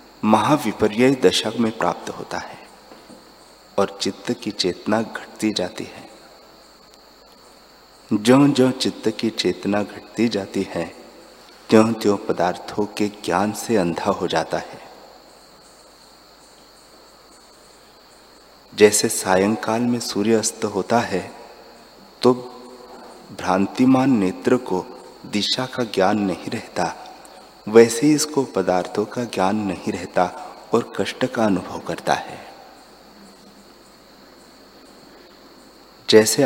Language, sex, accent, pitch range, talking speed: Hindi, male, native, 100-120 Hz, 100 wpm